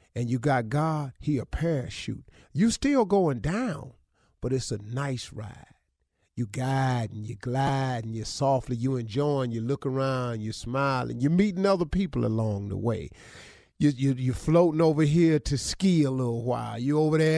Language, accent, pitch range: English, American, 115-150 Hz